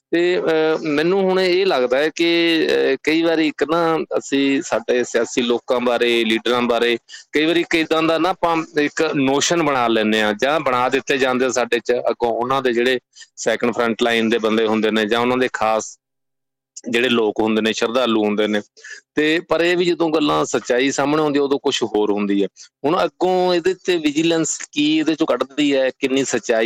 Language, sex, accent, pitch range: English, male, Indian, 115-150 Hz